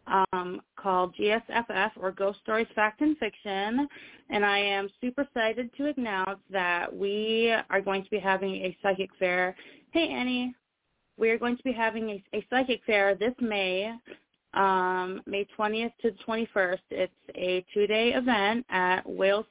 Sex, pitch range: female, 185-220 Hz